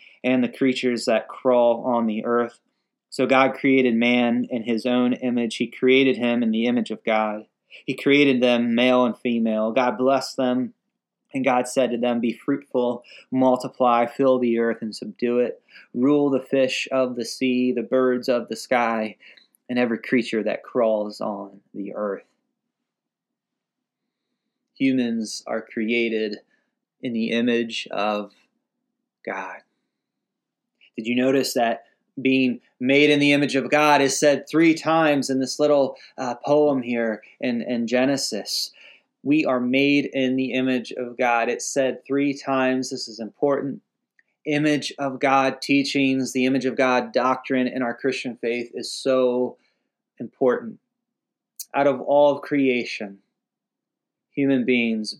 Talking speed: 150 wpm